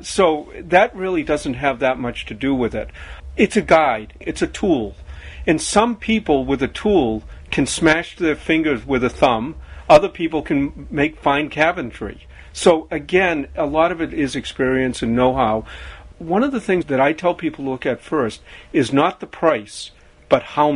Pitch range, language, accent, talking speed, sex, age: 115-185 Hz, English, American, 185 wpm, male, 50-69